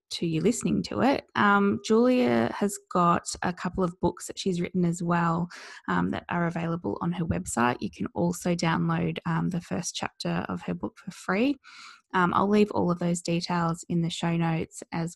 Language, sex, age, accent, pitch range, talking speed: English, female, 20-39, Australian, 165-190 Hz, 200 wpm